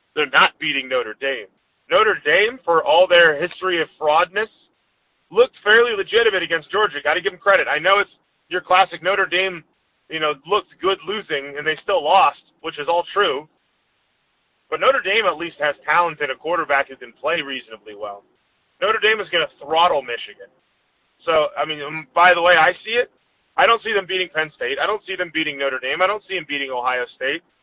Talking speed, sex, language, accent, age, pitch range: 205 wpm, male, English, American, 30-49, 150-200 Hz